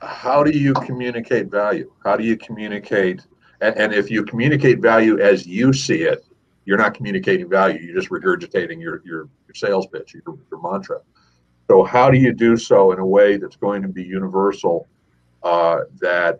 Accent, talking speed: American, 185 wpm